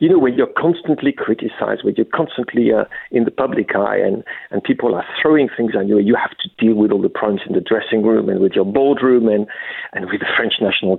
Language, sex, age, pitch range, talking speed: English, male, 50-69, 120-205 Hz, 240 wpm